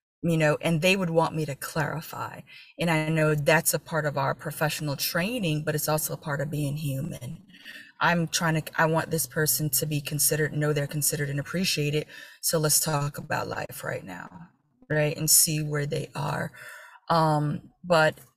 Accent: American